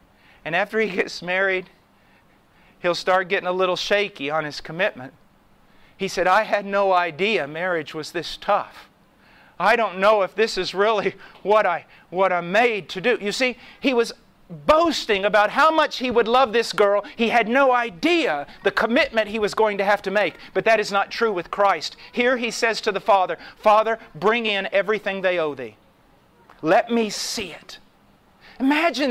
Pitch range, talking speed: 205-280 Hz, 180 wpm